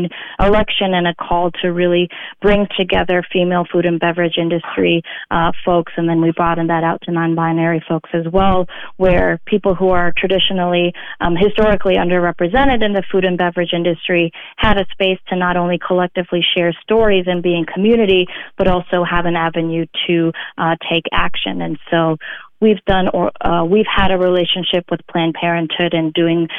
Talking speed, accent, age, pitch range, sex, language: 175 wpm, American, 30-49, 170-185 Hz, female, English